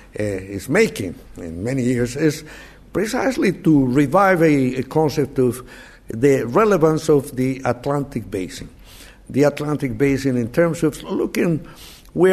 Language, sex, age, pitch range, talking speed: English, male, 60-79, 120-155 Hz, 135 wpm